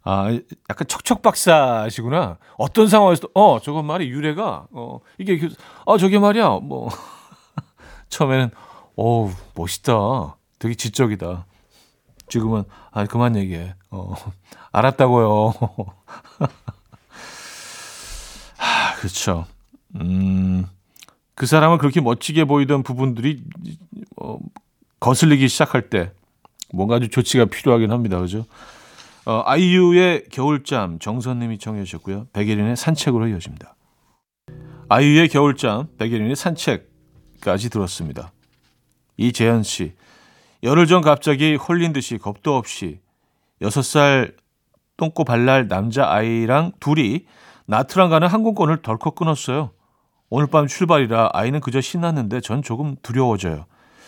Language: Korean